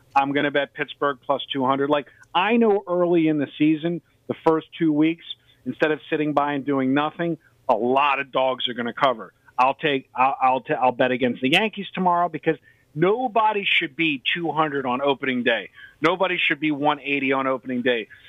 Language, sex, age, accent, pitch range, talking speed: English, male, 50-69, American, 130-170 Hz, 190 wpm